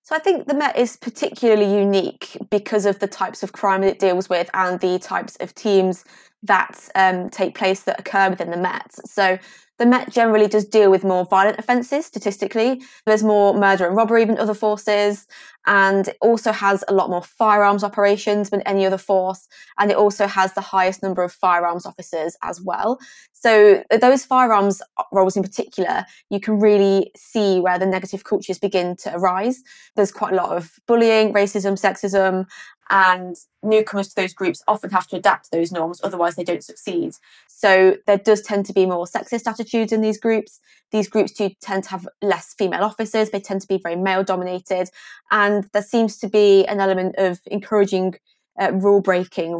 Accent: British